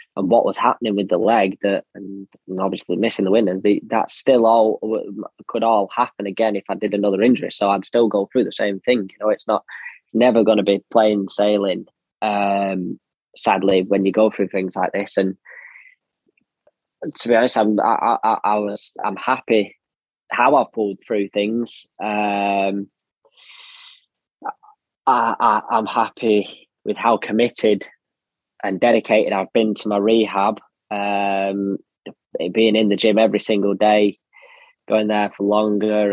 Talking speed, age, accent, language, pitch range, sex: 160 wpm, 10-29, British, English, 100-110 Hz, male